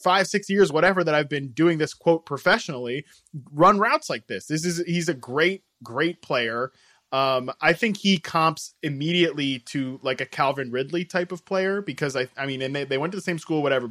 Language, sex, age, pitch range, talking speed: English, male, 20-39, 130-165 Hz, 210 wpm